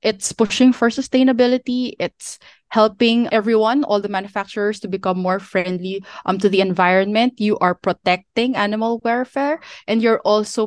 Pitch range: 180-220 Hz